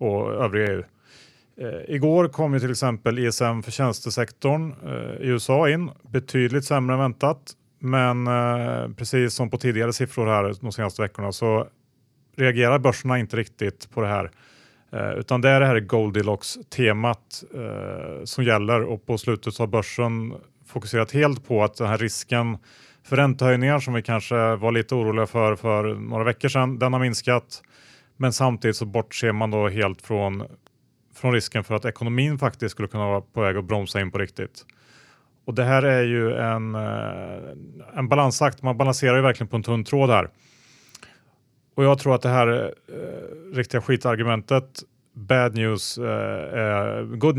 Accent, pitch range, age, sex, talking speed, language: Norwegian, 110-130 Hz, 30-49, male, 160 wpm, Swedish